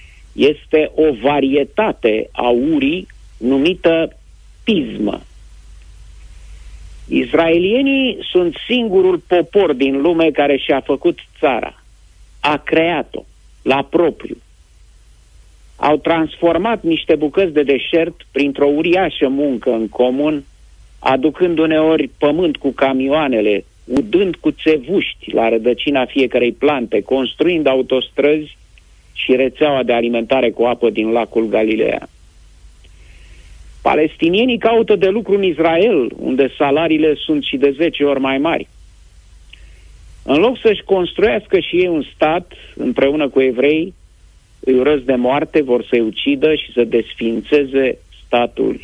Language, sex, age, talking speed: Romanian, male, 50-69, 115 wpm